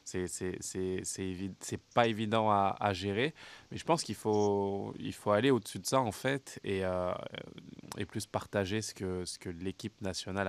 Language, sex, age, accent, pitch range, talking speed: French, male, 20-39, French, 95-110 Hz, 200 wpm